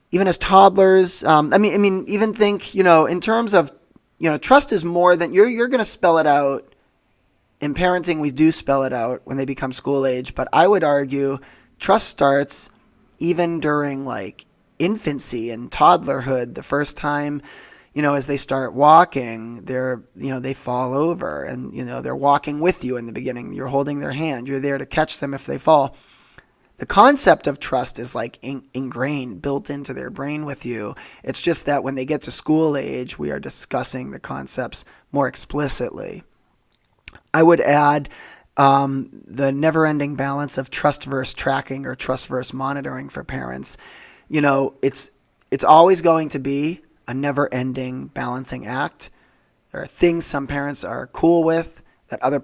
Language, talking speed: English, 180 wpm